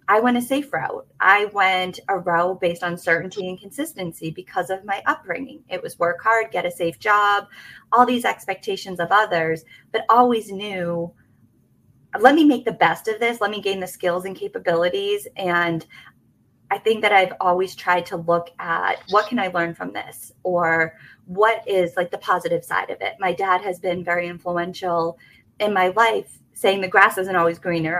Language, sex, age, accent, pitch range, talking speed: English, female, 30-49, American, 175-210 Hz, 190 wpm